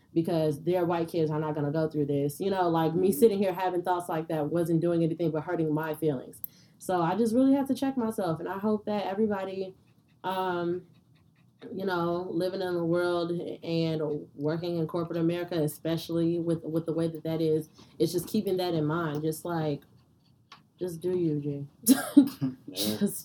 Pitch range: 160-205 Hz